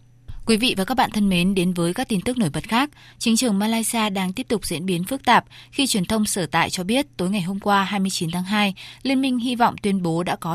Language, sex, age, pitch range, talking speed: Vietnamese, female, 20-39, 175-225 Hz, 265 wpm